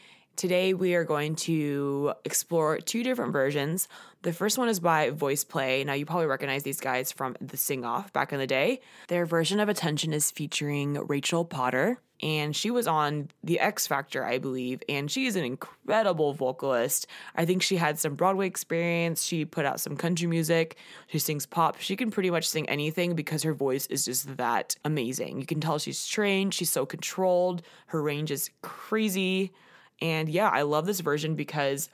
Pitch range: 145-175 Hz